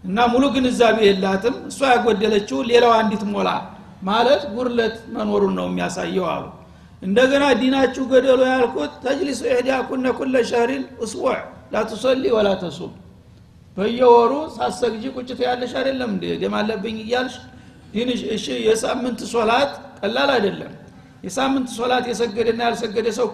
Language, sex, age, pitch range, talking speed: Amharic, male, 60-79, 215-255 Hz, 115 wpm